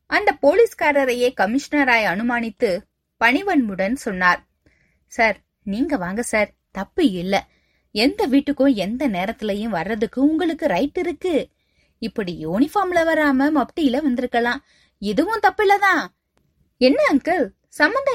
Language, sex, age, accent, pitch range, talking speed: Tamil, female, 20-39, native, 230-320 Hz, 95 wpm